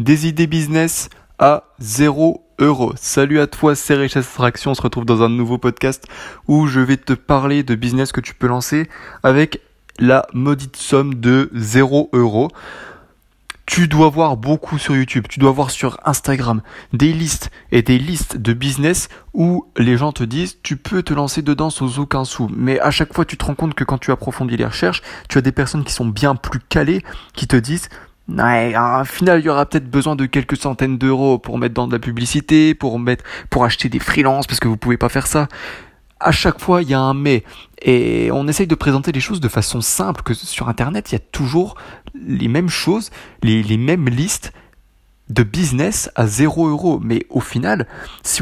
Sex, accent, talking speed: male, French, 210 wpm